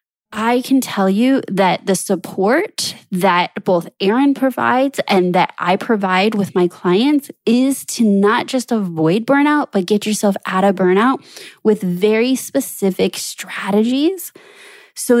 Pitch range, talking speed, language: 180-230 Hz, 140 wpm, English